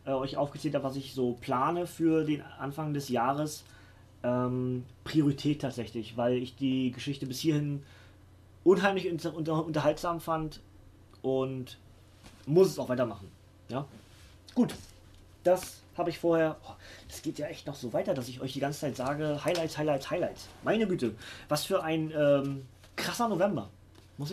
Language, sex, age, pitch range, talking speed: German, male, 30-49, 110-160 Hz, 150 wpm